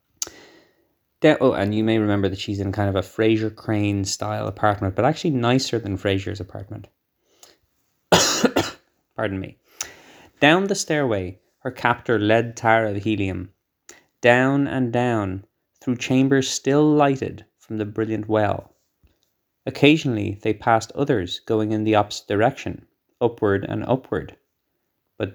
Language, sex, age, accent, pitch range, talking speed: English, male, 20-39, Irish, 100-125 Hz, 135 wpm